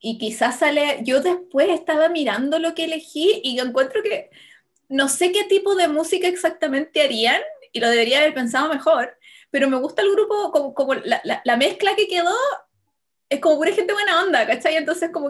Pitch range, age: 230-315 Hz, 20-39